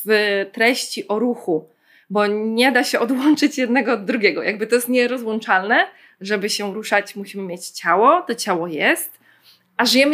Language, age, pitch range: Polish, 20-39, 195-245 Hz